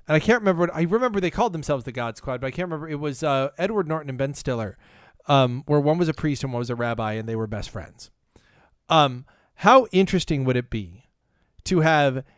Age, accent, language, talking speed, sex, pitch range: 40-59, American, English, 235 wpm, male, 140-185 Hz